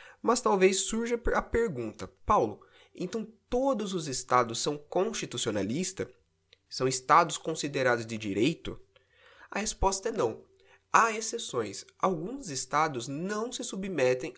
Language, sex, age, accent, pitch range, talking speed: Portuguese, male, 20-39, Brazilian, 130-195 Hz, 115 wpm